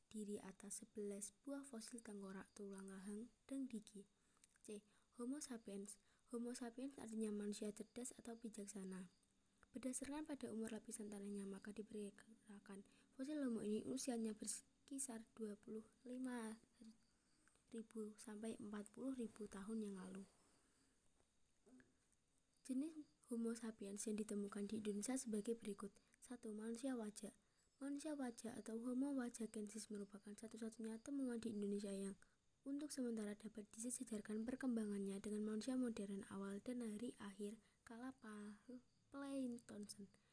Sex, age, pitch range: female, 20-39, 210-245 Hz